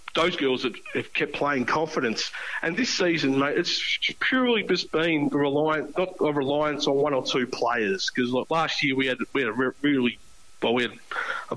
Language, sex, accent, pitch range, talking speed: English, male, Australian, 130-160 Hz, 180 wpm